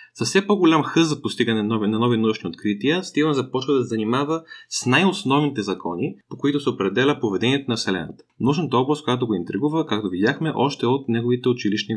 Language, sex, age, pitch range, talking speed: Bulgarian, male, 20-39, 115-145 Hz, 185 wpm